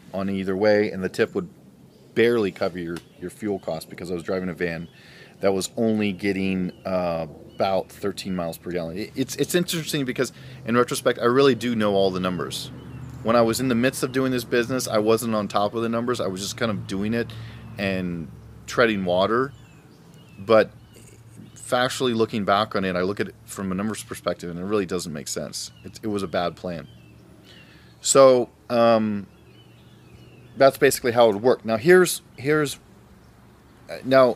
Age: 40-59